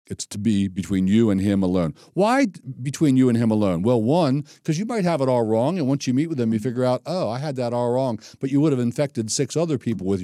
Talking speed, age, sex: 275 wpm, 60-79, male